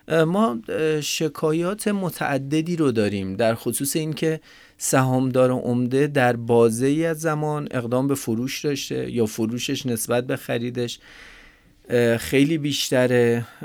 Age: 40-59